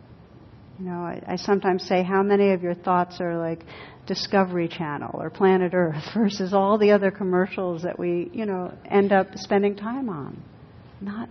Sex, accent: female, American